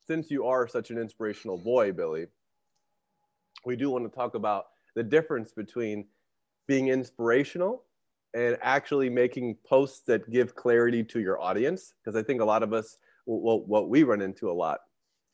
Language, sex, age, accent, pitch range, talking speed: English, male, 30-49, American, 110-135 Hz, 165 wpm